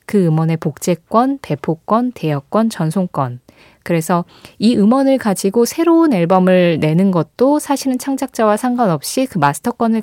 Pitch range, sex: 165-225 Hz, female